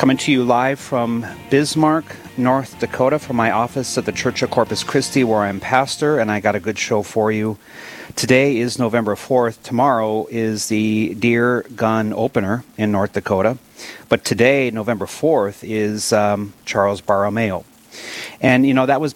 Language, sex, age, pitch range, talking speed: English, male, 40-59, 110-140 Hz, 170 wpm